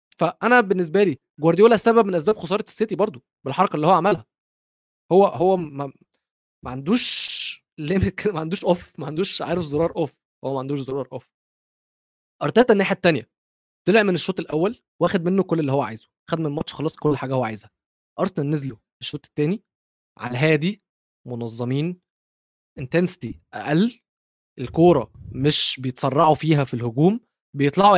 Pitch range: 145-190 Hz